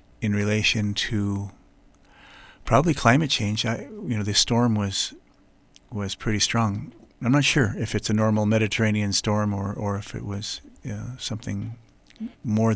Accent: American